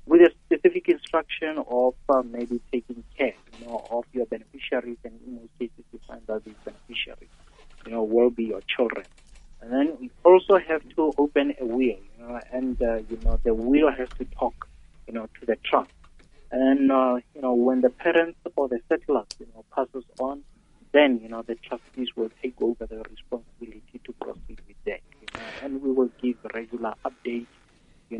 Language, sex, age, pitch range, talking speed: English, male, 30-49, 115-135 Hz, 200 wpm